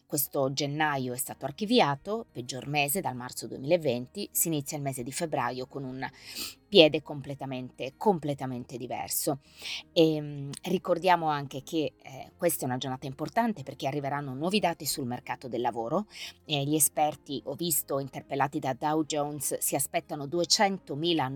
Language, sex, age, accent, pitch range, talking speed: Italian, female, 20-39, native, 130-160 Hz, 150 wpm